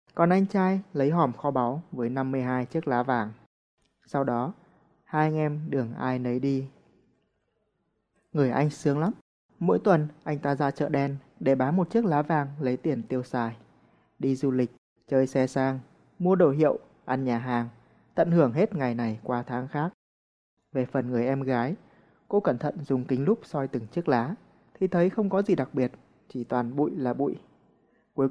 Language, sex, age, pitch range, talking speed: Vietnamese, male, 20-39, 130-165 Hz, 190 wpm